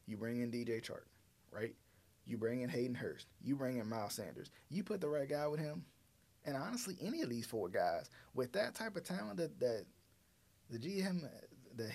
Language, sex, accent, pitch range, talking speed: English, male, American, 105-150 Hz, 200 wpm